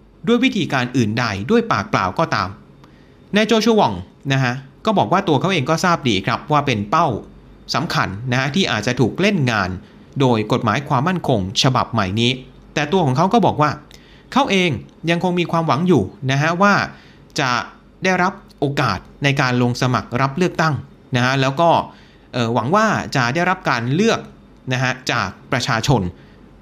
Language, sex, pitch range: Thai, male, 120-165 Hz